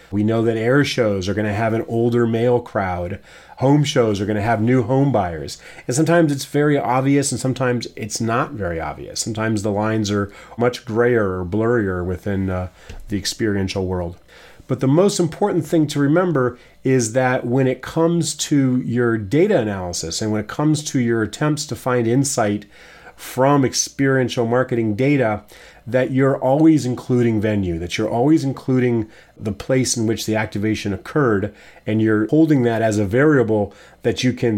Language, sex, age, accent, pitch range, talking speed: English, male, 30-49, American, 105-130 Hz, 175 wpm